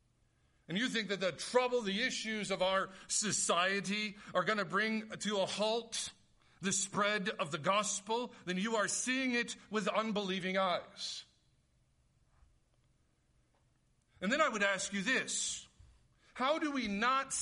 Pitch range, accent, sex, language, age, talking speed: 180-245 Hz, American, male, English, 50-69, 145 wpm